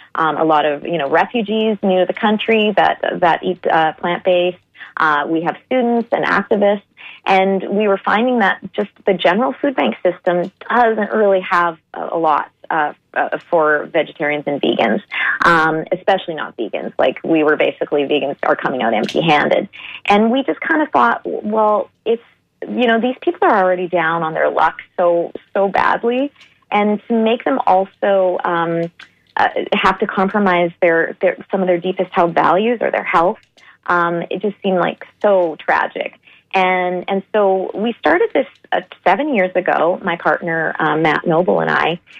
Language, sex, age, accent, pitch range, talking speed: English, female, 30-49, American, 175-210 Hz, 175 wpm